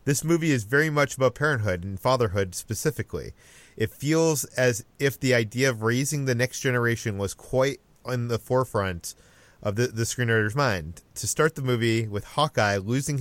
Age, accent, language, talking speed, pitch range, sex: 30-49, American, English, 175 wpm, 105-130 Hz, male